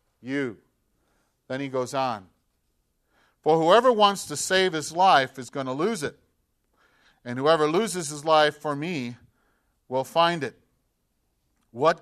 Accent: American